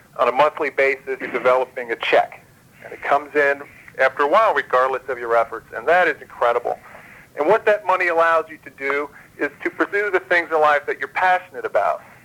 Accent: American